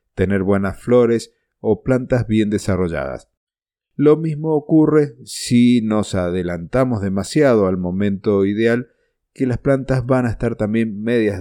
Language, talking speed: Spanish, 130 wpm